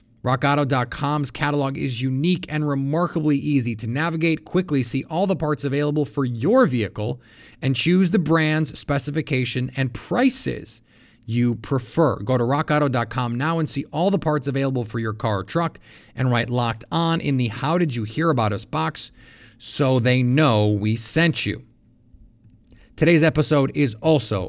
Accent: American